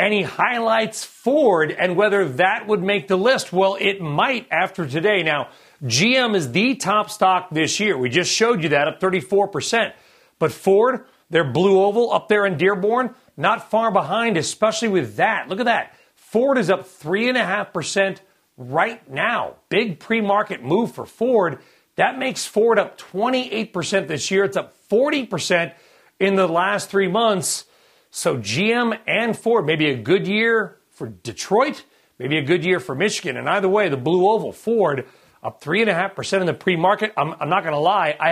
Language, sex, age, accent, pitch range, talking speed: English, male, 40-59, American, 170-215 Hz, 170 wpm